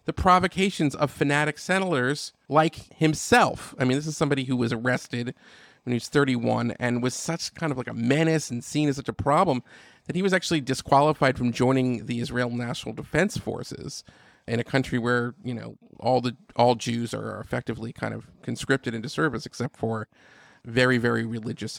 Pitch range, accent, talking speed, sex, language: 120-150 Hz, American, 185 wpm, male, English